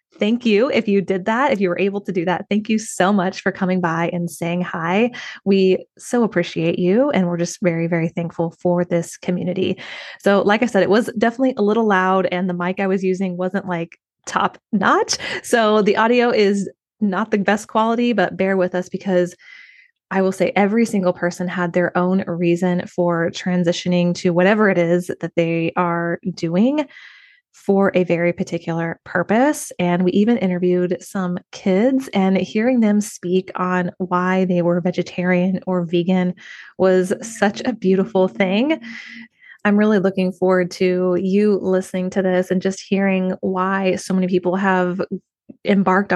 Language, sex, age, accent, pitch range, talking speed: English, female, 20-39, American, 180-205 Hz, 175 wpm